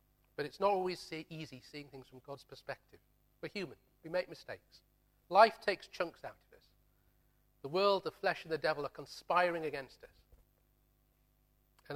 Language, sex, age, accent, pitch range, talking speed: English, male, 40-59, British, 130-170 Hz, 170 wpm